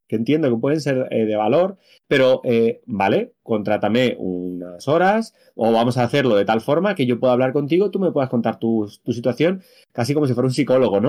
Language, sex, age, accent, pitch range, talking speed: Spanish, male, 30-49, Spanish, 125-175 Hz, 215 wpm